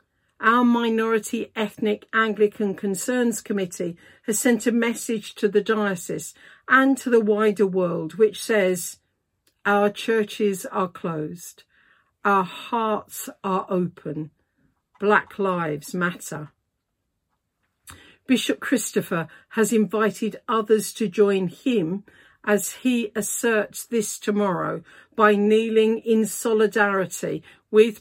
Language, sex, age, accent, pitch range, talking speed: English, female, 50-69, British, 185-220 Hz, 105 wpm